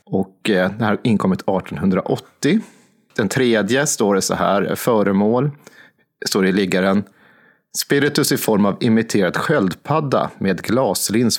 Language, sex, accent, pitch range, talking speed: Swedish, male, native, 105-145 Hz, 135 wpm